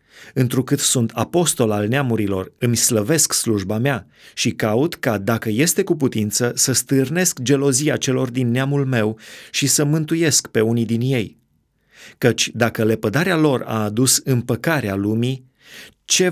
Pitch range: 110-140 Hz